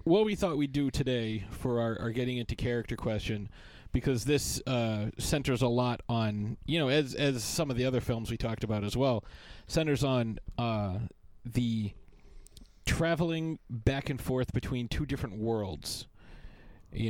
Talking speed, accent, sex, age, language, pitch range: 165 wpm, American, male, 30-49, English, 110-135 Hz